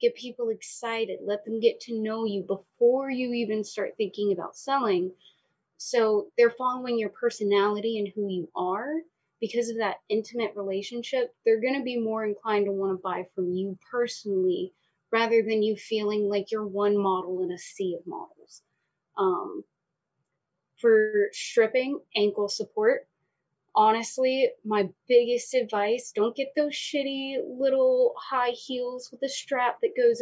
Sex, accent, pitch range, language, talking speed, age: female, American, 200-270 Hz, English, 155 wpm, 20-39